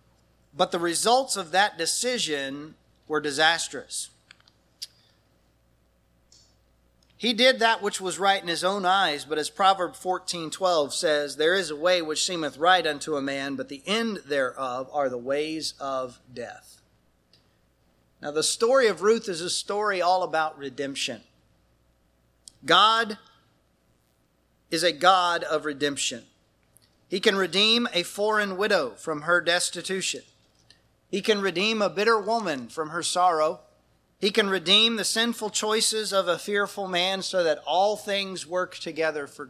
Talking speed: 145 wpm